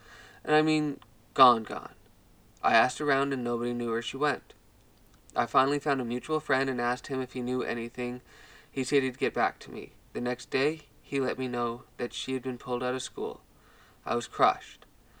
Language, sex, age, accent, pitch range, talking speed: English, male, 20-39, American, 120-140 Hz, 205 wpm